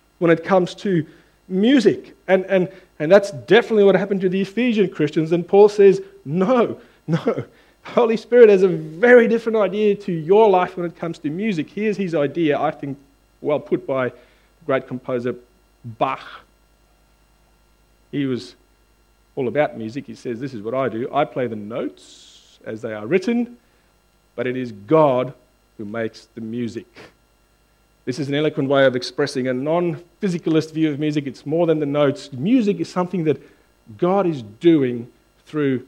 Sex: male